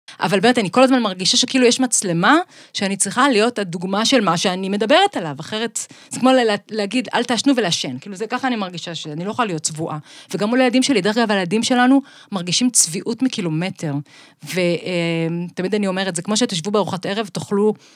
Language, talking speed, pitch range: Hebrew, 190 wpm, 175-245 Hz